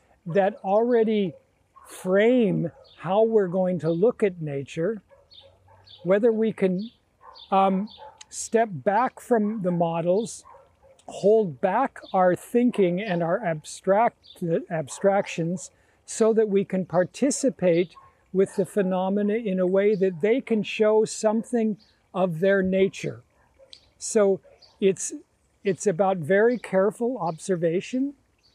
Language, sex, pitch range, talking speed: English, male, 185-220 Hz, 110 wpm